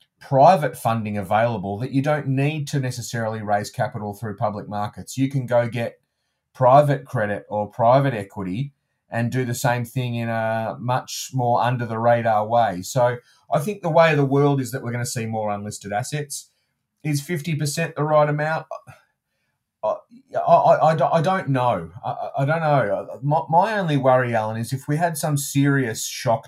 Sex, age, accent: male, 30-49, Australian